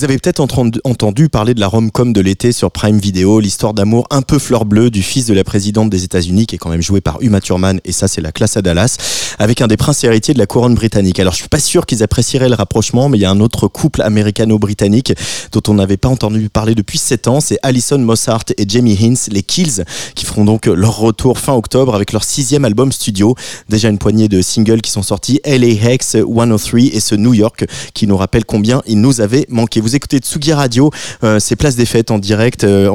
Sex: male